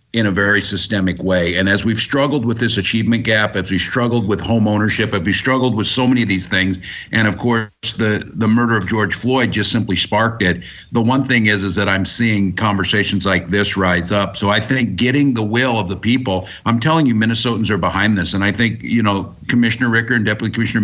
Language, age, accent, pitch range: English, 50-69, American, 95-120 Hz